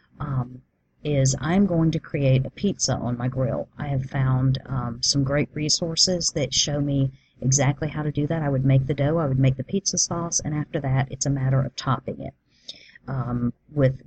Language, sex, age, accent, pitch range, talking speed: English, female, 40-59, American, 130-150 Hz, 205 wpm